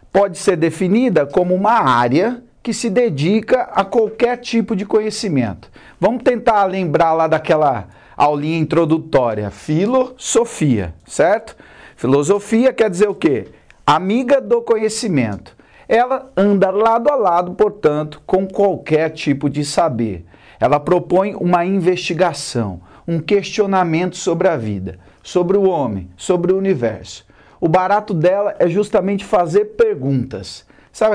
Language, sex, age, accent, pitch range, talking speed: Portuguese, male, 40-59, Brazilian, 140-205 Hz, 125 wpm